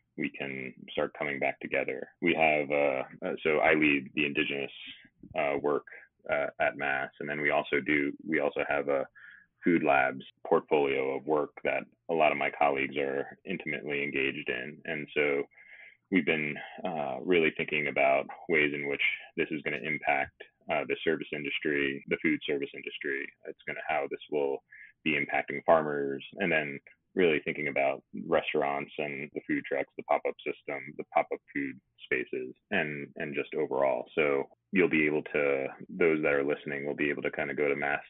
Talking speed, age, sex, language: 180 wpm, 30-49, male, English